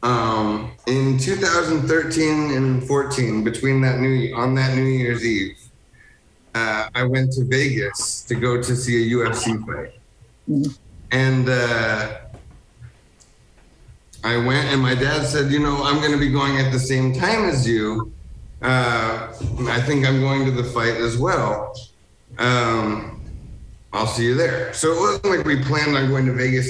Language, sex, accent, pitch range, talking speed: English, male, American, 120-140 Hz, 160 wpm